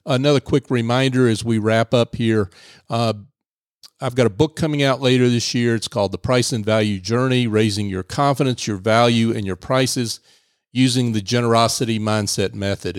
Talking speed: 175 wpm